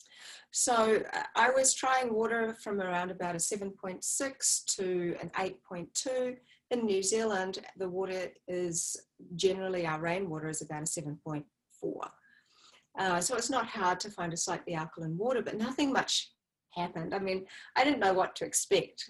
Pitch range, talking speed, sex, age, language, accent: 175-230 Hz, 175 wpm, female, 30-49, English, Australian